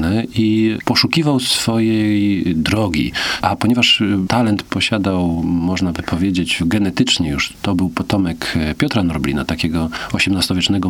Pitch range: 90-115 Hz